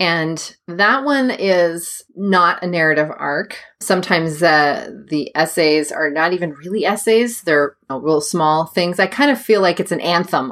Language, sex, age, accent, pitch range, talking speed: English, female, 30-49, American, 150-200 Hz, 175 wpm